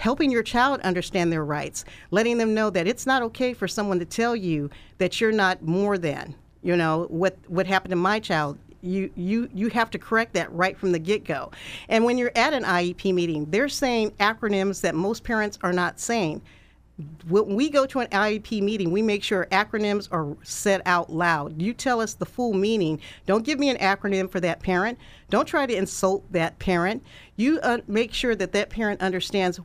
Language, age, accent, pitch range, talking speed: English, 50-69, American, 180-225 Hz, 200 wpm